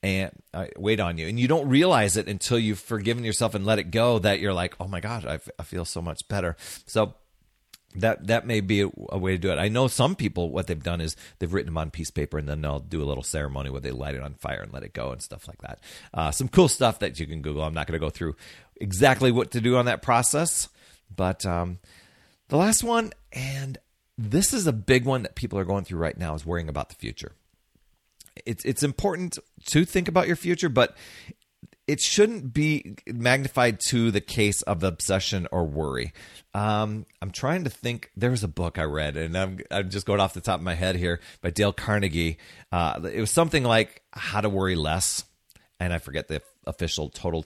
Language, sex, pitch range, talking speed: English, male, 85-115 Hz, 230 wpm